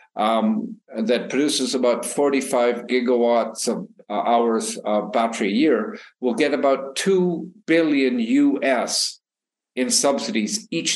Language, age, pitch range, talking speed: English, 50-69, 115-155 Hz, 115 wpm